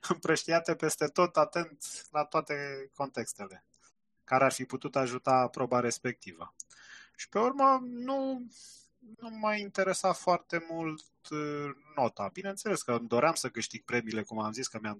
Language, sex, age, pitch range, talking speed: Romanian, male, 20-39, 130-180 Hz, 145 wpm